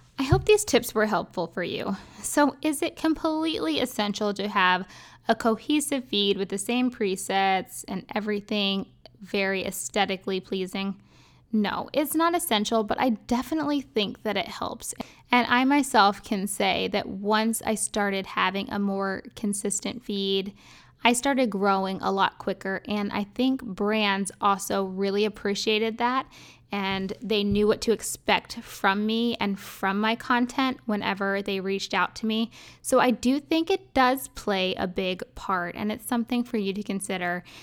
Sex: female